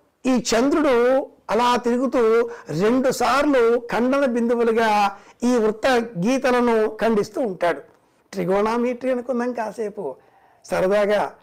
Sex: male